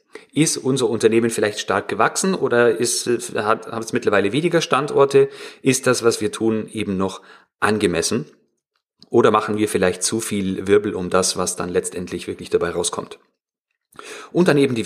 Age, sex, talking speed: 40-59, male, 160 wpm